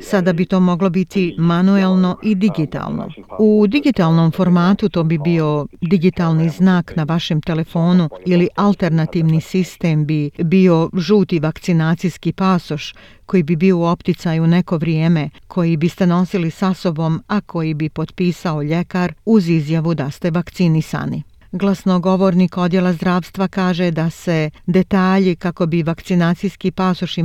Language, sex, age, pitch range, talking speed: Croatian, female, 50-69, 160-185 Hz, 130 wpm